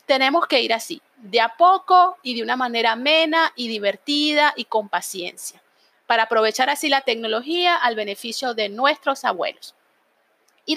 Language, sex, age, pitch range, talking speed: Spanish, female, 30-49, 220-280 Hz, 155 wpm